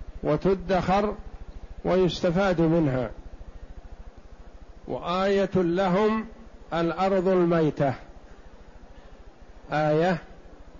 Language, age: Arabic, 50-69